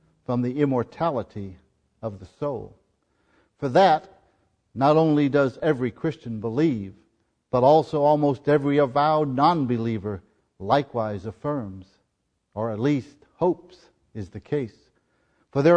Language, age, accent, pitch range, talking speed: English, 50-69, American, 115-160 Hz, 120 wpm